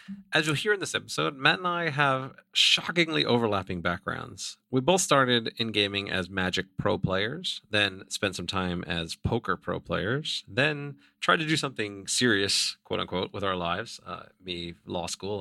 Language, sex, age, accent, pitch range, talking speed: English, male, 40-59, American, 90-120 Hz, 175 wpm